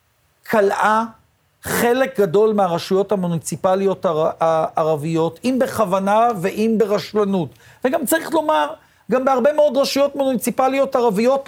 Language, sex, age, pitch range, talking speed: Hebrew, male, 50-69, 190-250 Hz, 100 wpm